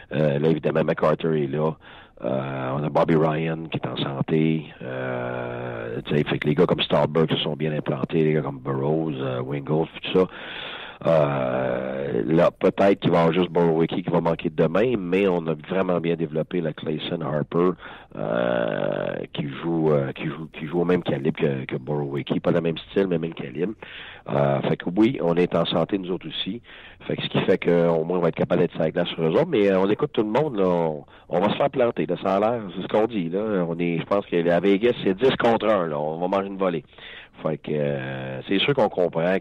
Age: 40-59